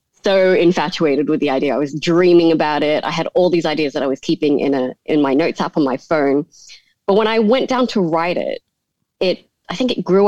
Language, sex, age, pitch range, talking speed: English, female, 20-39, 150-185 Hz, 240 wpm